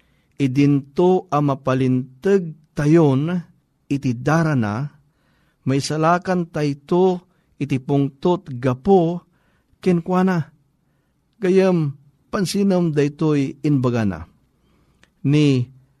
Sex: male